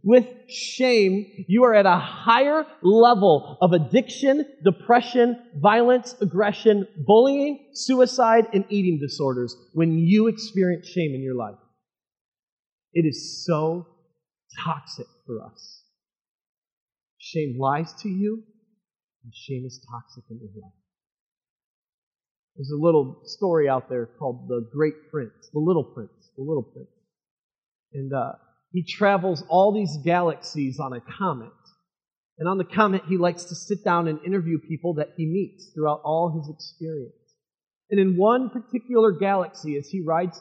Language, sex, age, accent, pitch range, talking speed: English, male, 40-59, American, 155-220 Hz, 140 wpm